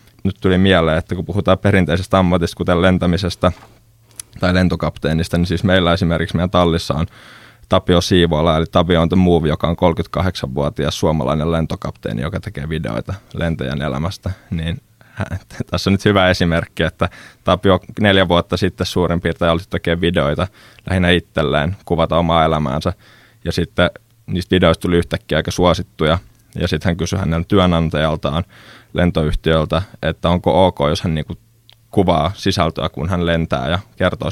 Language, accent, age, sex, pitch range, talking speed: Finnish, native, 20-39, male, 80-95 Hz, 145 wpm